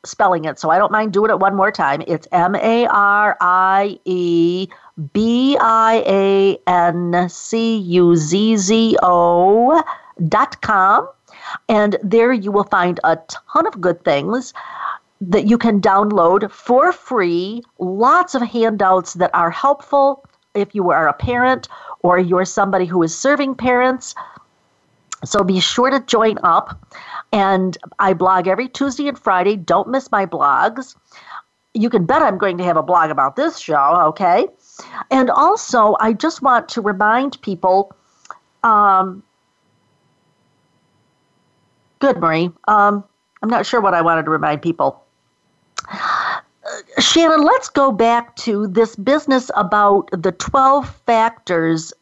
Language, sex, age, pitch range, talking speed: English, female, 50-69, 185-240 Hz, 130 wpm